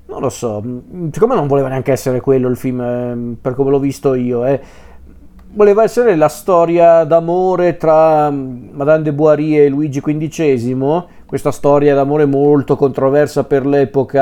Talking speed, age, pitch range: 155 wpm, 40-59, 130-165 Hz